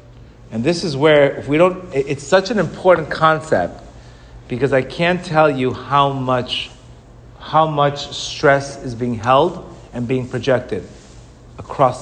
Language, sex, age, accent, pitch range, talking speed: English, male, 40-59, American, 130-180 Hz, 145 wpm